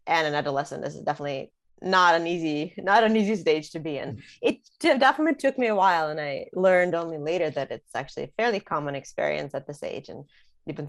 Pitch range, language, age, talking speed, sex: 150-180 Hz, English, 20-39, 220 wpm, female